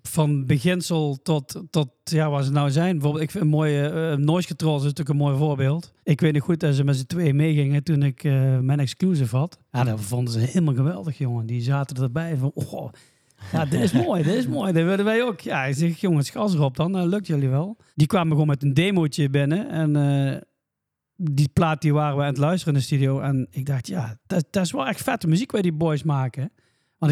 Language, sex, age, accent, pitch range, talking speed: Dutch, male, 40-59, Dutch, 140-165 Hz, 235 wpm